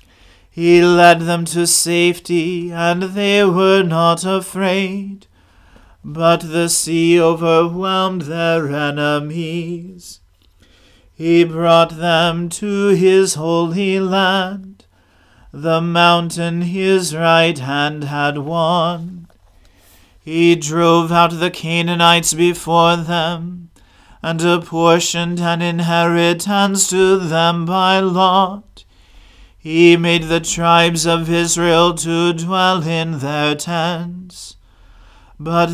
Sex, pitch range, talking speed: male, 160-175 Hz, 95 wpm